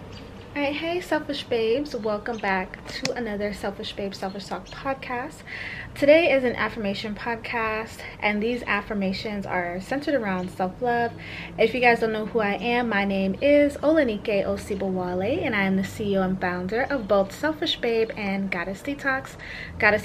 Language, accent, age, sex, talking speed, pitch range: English, American, 20-39, female, 155 wpm, 195-255 Hz